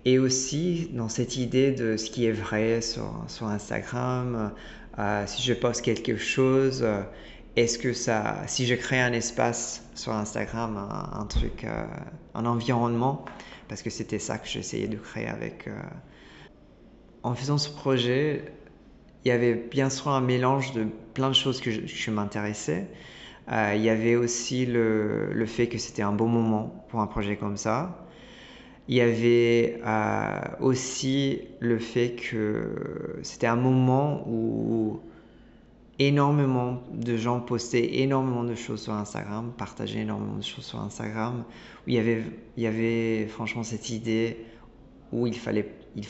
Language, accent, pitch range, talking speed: French, French, 110-130 Hz, 160 wpm